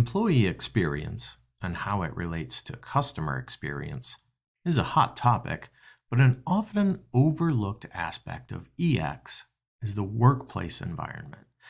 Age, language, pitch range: 50-69, English, 100-135 Hz